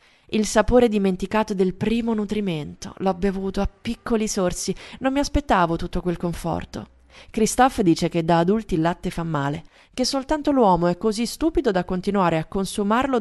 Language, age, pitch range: Italian, 20-39, 175-225 Hz